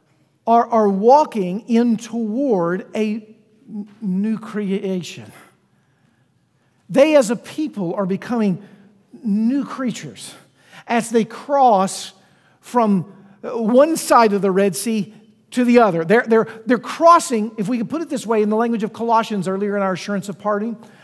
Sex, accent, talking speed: male, American, 145 wpm